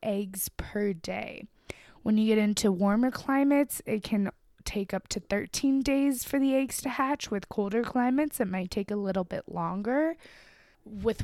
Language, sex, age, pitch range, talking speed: English, female, 20-39, 185-235 Hz, 170 wpm